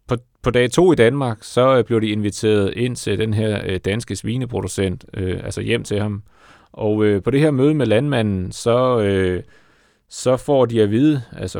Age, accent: 30-49, native